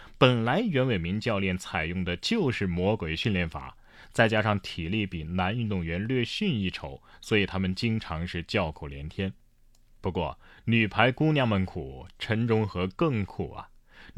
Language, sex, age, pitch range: Chinese, male, 30-49, 90-125 Hz